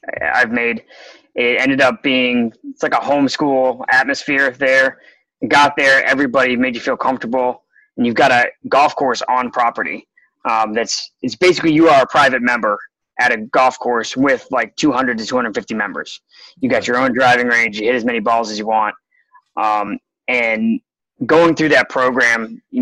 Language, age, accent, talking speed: English, 20-39, American, 175 wpm